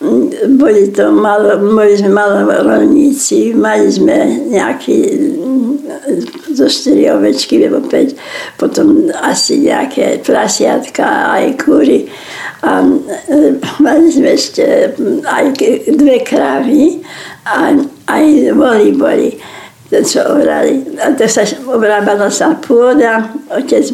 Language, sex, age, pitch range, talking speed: Slovak, female, 60-79, 270-315 Hz, 95 wpm